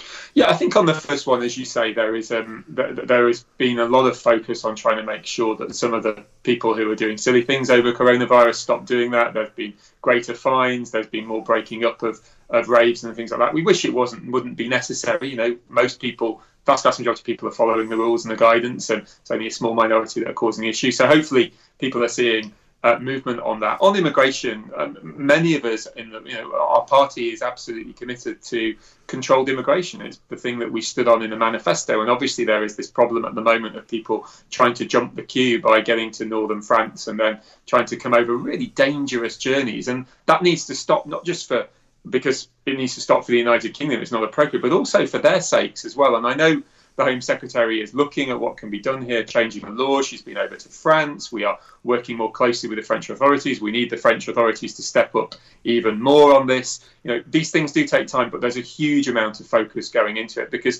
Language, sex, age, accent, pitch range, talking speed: English, male, 30-49, British, 110-130 Hz, 245 wpm